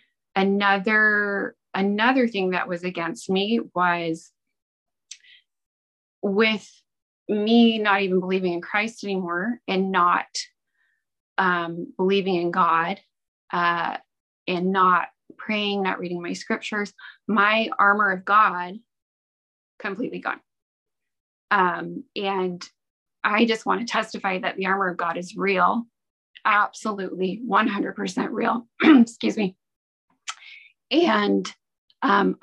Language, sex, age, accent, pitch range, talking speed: English, female, 20-39, American, 180-220 Hz, 105 wpm